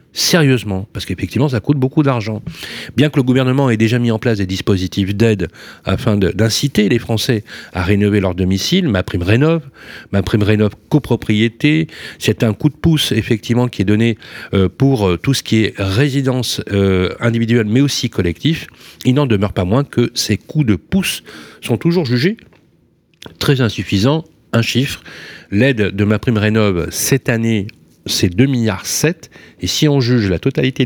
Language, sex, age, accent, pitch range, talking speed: French, male, 40-59, French, 100-130 Hz, 175 wpm